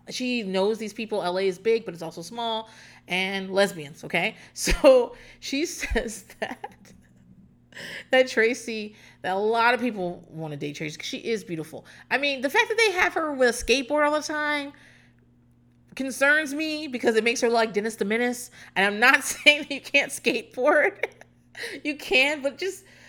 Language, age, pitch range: English, 30-49, 185-290 Hz